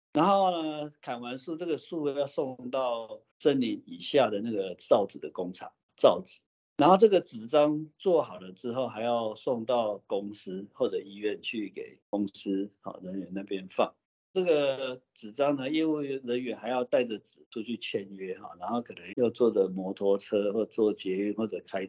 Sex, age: male, 50-69